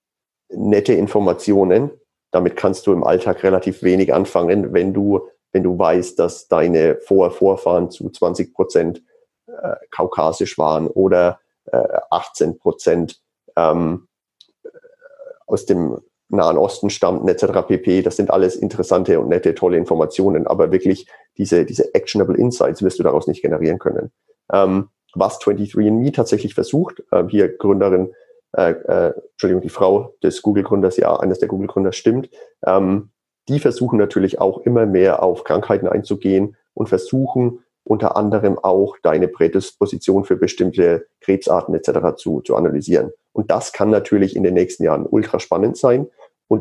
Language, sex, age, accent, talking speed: German, male, 40-59, German, 145 wpm